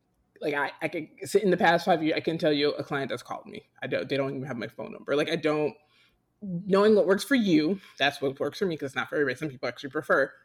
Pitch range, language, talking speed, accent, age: 140-180 Hz, English, 285 wpm, American, 20-39